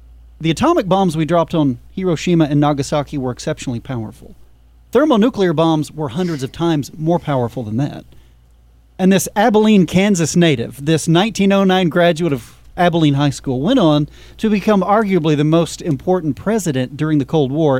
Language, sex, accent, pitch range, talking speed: English, male, American, 125-175 Hz, 160 wpm